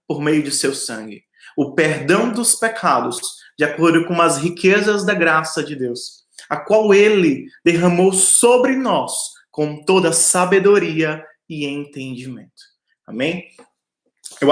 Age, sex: 20-39, male